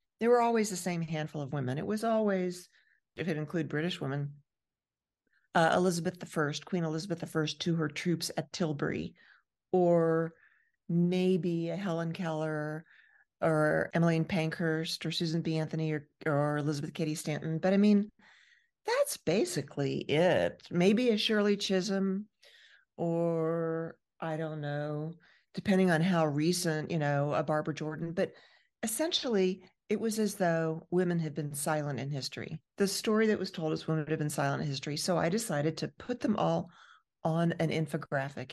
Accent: American